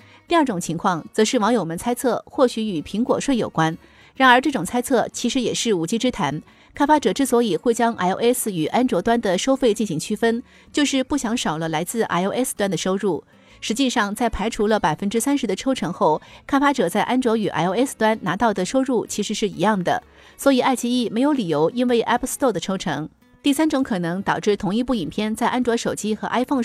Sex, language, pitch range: female, Chinese, 195-250 Hz